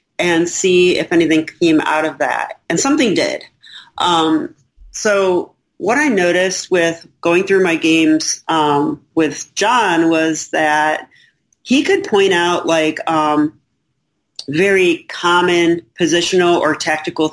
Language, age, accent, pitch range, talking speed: English, 40-59, American, 155-190 Hz, 130 wpm